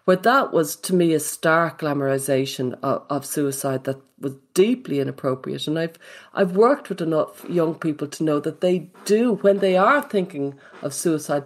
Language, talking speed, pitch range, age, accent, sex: English, 180 wpm, 145-180 Hz, 40-59, Irish, female